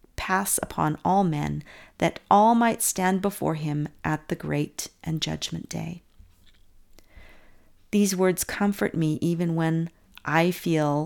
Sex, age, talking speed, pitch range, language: female, 40-59, 130 wpm, 145-185 Hz, English